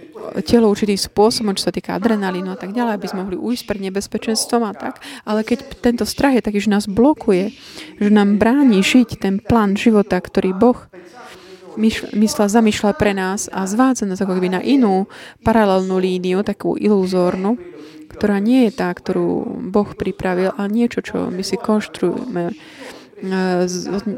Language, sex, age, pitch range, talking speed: Slovak, female, 20-39, 195-230 Hz, 160 wpm